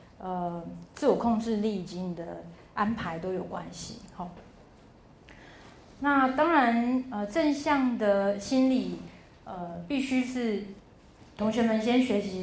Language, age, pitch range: Chinese, 30-49, 195-245 Hz